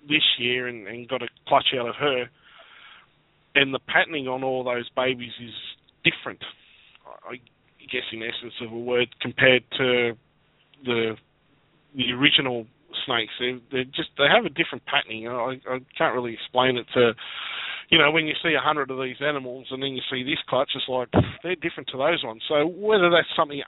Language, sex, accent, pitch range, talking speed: English, male, Australian, 125-145 Hz, 190 wpm